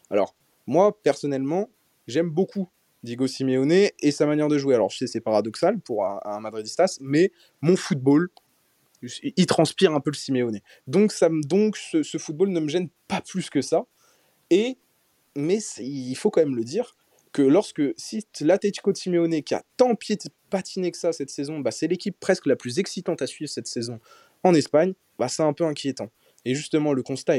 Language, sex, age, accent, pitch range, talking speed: French, male, 20-39, French, 130-170 Hz, 195 wpm